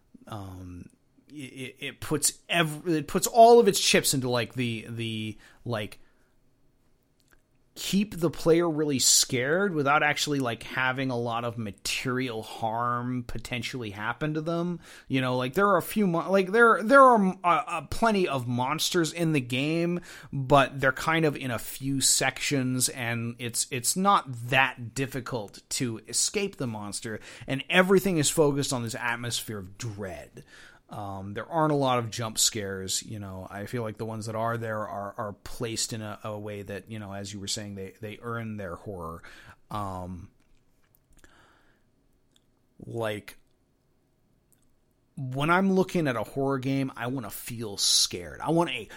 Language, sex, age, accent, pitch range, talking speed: English, male, 30-49, American, 110-150 Hz, 165 wpm